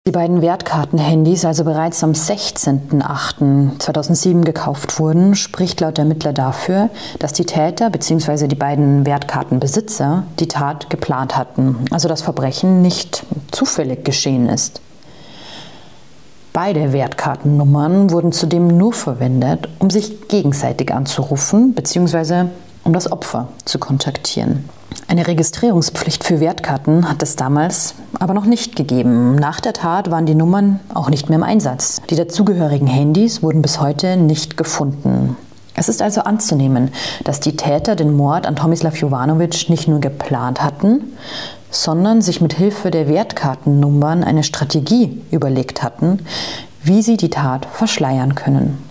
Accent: German